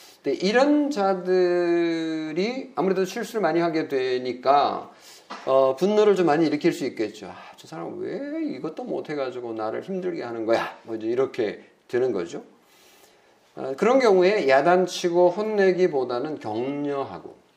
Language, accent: Korean, native